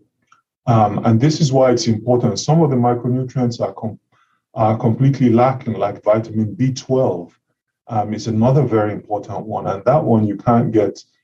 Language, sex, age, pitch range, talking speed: English, male, 30-49, 110-140 Hz, 160 wpm